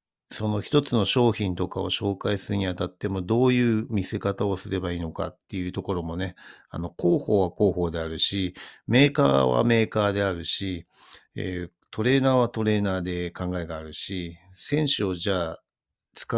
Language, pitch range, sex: Japanese, 90-110 Hz, male